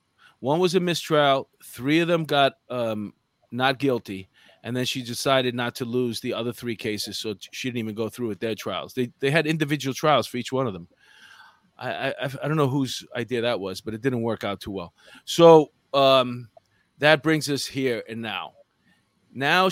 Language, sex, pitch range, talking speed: English, male, 115-150 Hz, 200 wpm